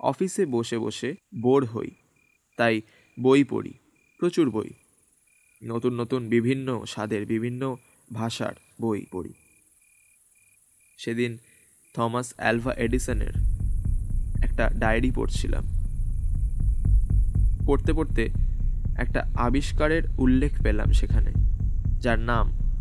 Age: 20-39